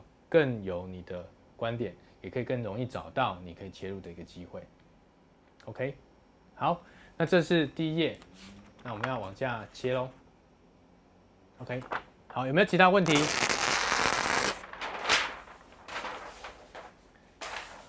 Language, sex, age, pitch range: Chinese, male, 20-39, 95-150 Hz